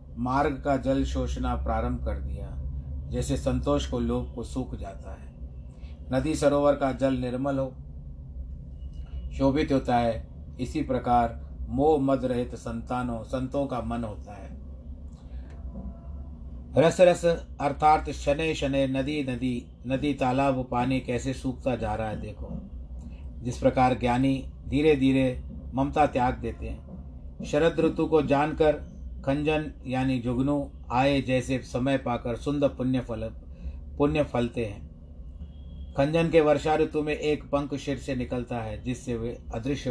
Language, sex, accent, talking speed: Hindi, male, native, 135 wpm